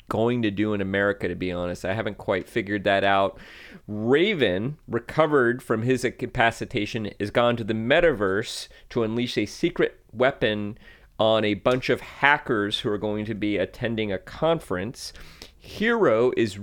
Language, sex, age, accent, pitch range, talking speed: English, male, 30-49, American, 105-120 Hz, 160 wpm